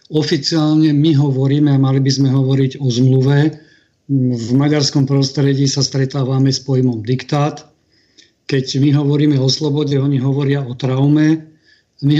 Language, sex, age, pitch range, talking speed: Slovak, male, 40-59, 135-150 Hz, 140 wpm